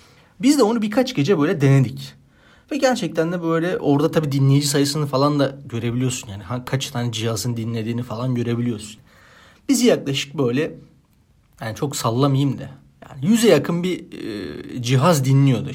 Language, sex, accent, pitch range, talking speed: Turkish, male, native, 120-160 Hz, 150 wpm